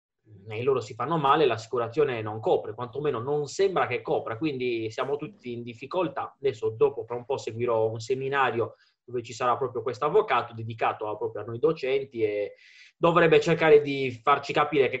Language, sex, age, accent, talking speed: Italian, male, 20-39, native, 175 wpm